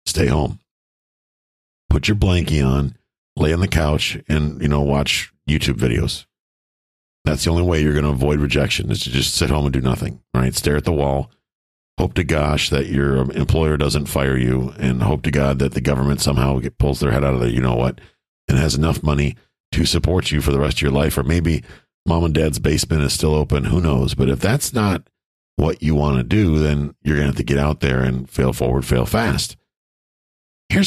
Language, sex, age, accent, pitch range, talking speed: English, male, 50-69, American, 70-80 Hz, 220 wpm